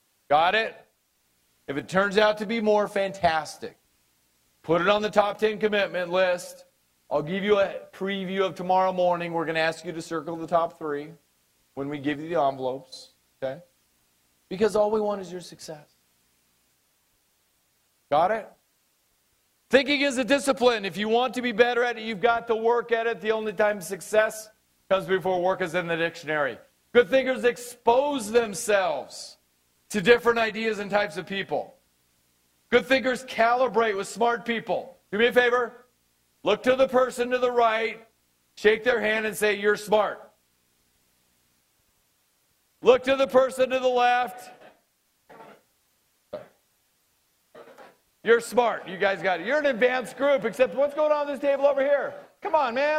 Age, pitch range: 40-59, 170-245 Hz